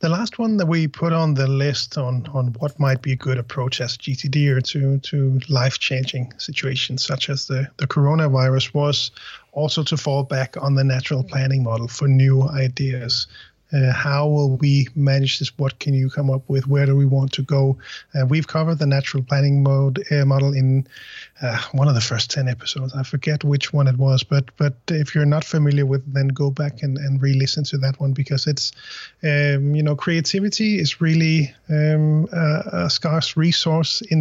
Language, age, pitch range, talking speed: English, 30-49, 135-150 Hz, 200 wpm